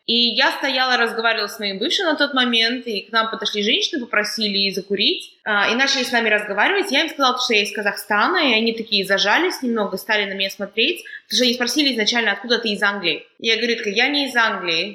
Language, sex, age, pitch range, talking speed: Russian, female, 20-39, 210-255 Hz, 215 wpm